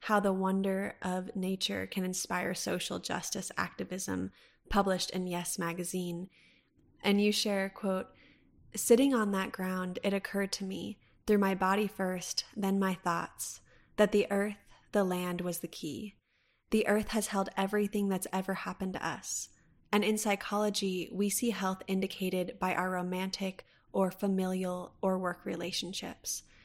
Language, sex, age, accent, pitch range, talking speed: English, female, 20-39, American, 180-205 Hz, 150 wpm